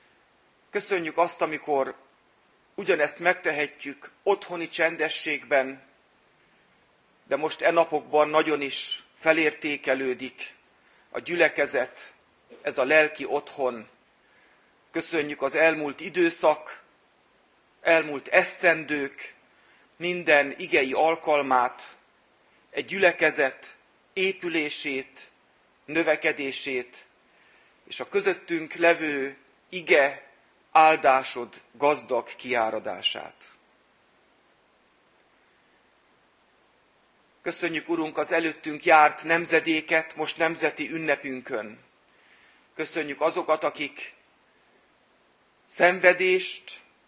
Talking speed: 70 wpm